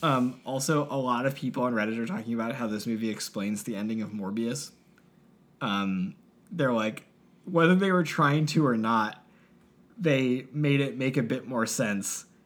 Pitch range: 115-170 Hz